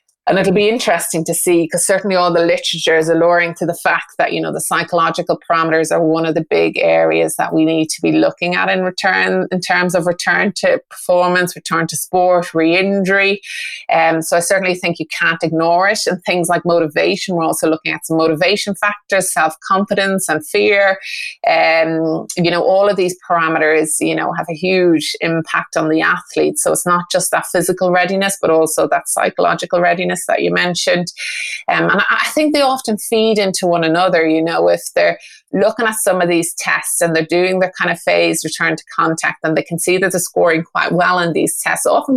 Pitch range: 160-190 Hz